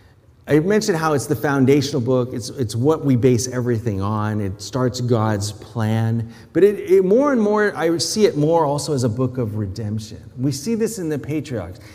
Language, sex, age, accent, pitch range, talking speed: English, male, 30-49, American, 115-165 Hz, 200 wpm